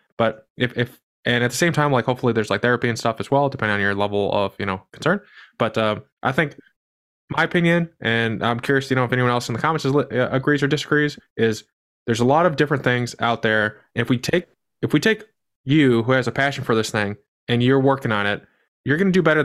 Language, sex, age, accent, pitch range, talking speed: English, male, 20-39, American, 115-145 Hz, 250 wpm